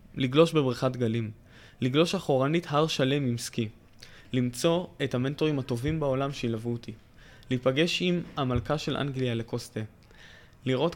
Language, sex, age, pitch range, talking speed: Hebrew, male, 20-39, 115-150 Hz, 125 wpm